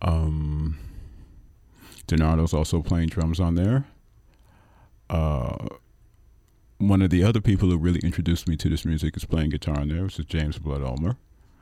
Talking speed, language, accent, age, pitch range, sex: 155 wpm, English, American, 40-59, 75-90 Hz, male